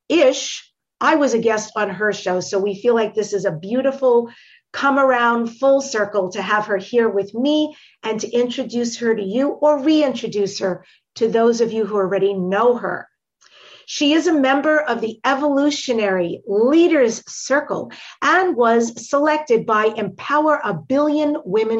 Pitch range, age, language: 205-275 Hz, 50-69, English